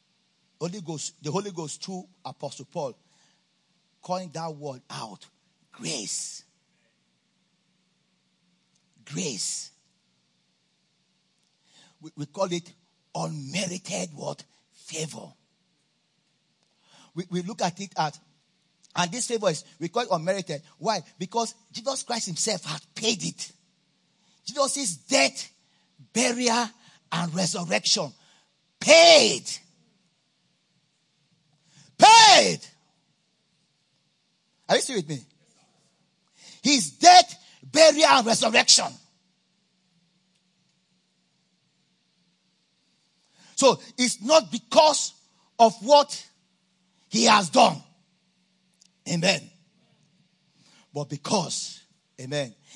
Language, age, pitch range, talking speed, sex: English, 40-59, 175-200 Hz, 85 wpm, male